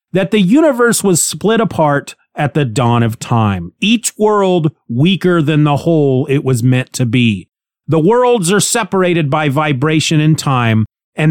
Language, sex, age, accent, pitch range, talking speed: English, male, 30-49, American, 130-185 Hz, 165 wpm